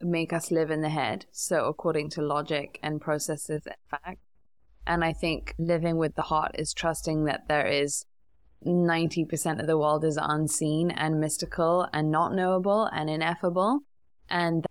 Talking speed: 165 wpm